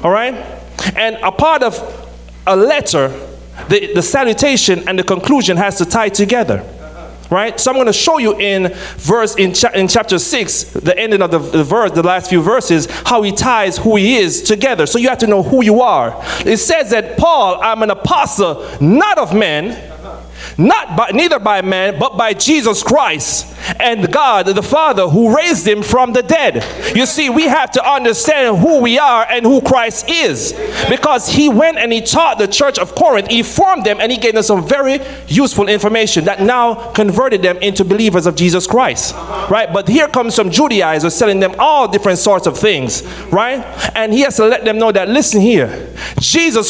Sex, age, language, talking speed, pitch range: male, 30-49, English, 195 wpm, 190-260 Hz